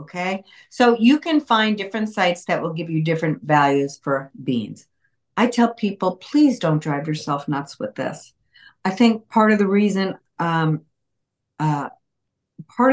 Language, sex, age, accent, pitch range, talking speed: English, female, 50-69, American, 145-190 Hz, 160 wpm